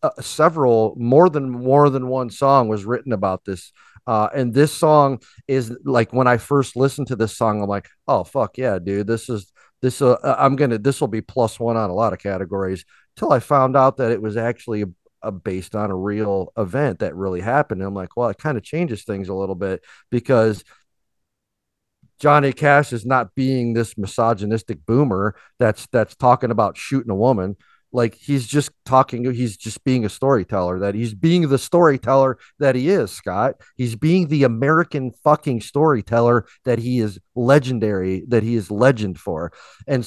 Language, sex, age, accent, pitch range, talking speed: English, male, 40-59, American, 100-130 Hz, 190 wpm